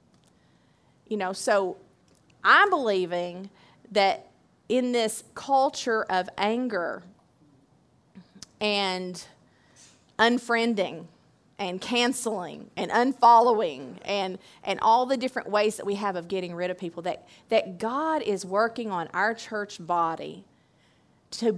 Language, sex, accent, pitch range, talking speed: English, female, American, 180-225 Hz, 115 wpm